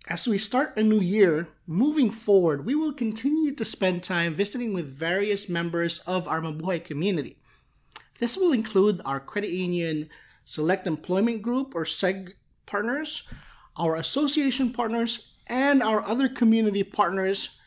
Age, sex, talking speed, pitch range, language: 30-49, male, 145 wpm, 165-220 Hz, English